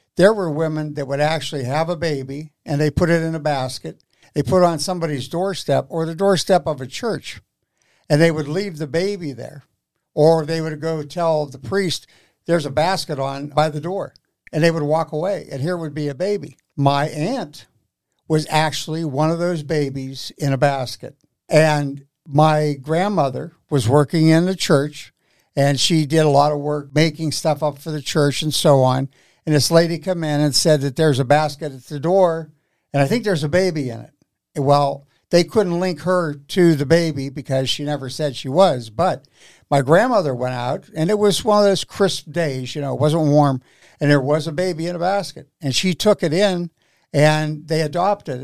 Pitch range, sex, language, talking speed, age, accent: 145-170 Hz, male, English, 205 wpm, 60-79, American